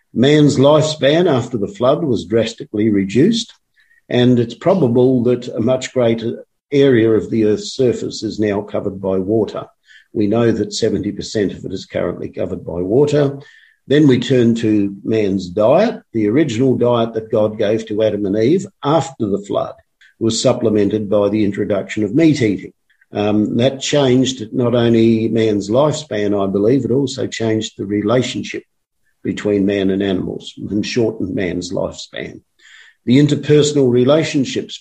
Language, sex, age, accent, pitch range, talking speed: English, male, 50-69, Australian, 105-130 Hz, 150 wpm